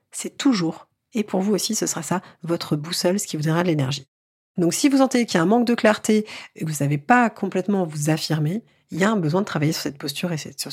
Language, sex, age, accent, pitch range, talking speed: French, female, 30-49, French, 175-230 Hz, 270 wpm